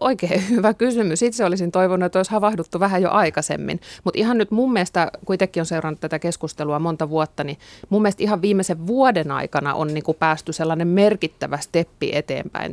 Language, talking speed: Finnish, 185 wpm